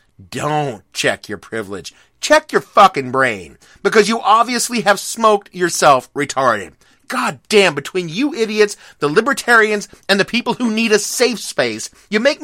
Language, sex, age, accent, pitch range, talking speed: English, male, 30-49, American, 150-225 Hz, 155 wpm